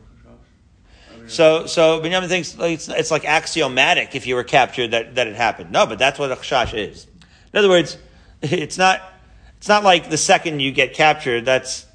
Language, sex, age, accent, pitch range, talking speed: English, male, 40-59, American, 115-155 Hz, 180 wpm